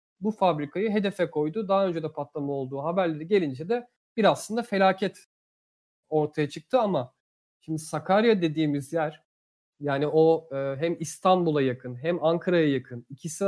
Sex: male